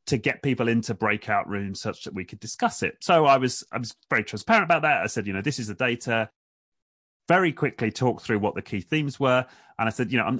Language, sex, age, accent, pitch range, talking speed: English, male, 30-49, British, 110-165 Hz, 250 wpm